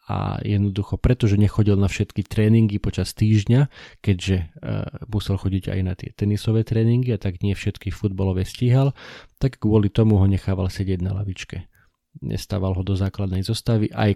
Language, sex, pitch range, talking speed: Slovak, male, 95-110 Hz, 155 wpm